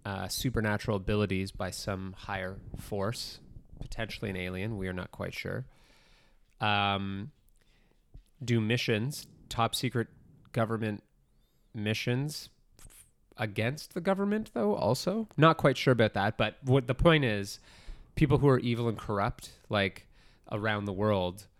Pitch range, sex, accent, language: 95-115 Hz, male, American, English